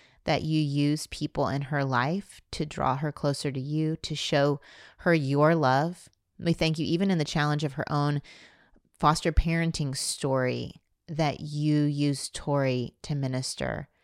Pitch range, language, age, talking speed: 140-170 Hz, English, 30-49, 160 wpm